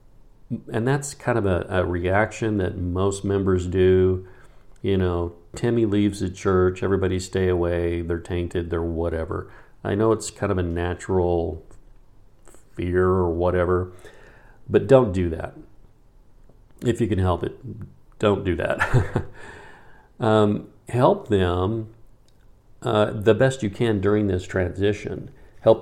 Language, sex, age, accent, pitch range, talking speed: English, male, 50-69, American, 90-105 Hz, 135 wpm